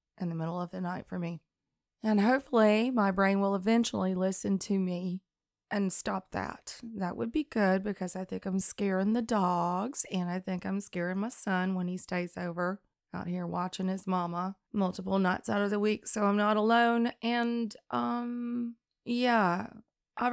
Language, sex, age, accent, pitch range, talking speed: English, female, 20-39, American, 180-215 Hz, 180 wpm